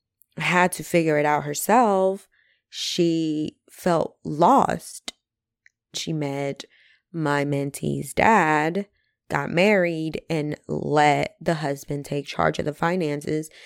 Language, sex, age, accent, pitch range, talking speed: English, female, 20-39, American, 150-190 Hz, 110 wpm